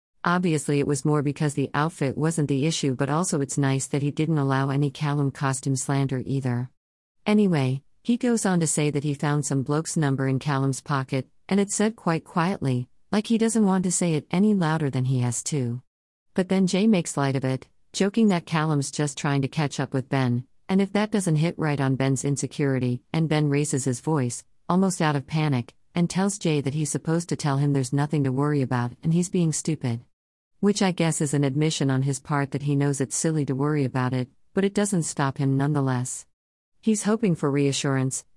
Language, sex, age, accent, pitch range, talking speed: English, female, 50-69, American, 135-165 Hz, 215 wpm